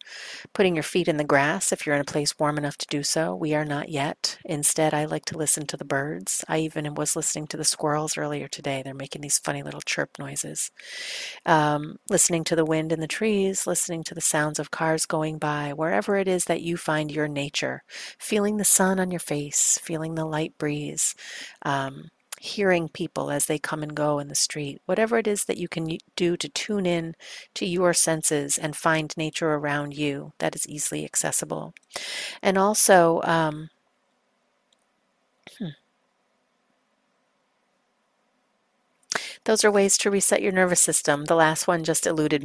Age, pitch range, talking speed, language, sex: 40-59, 150-180 Hz, 180 wpm, English, female